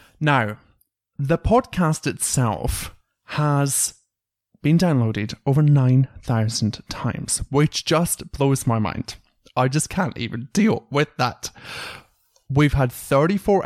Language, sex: English, male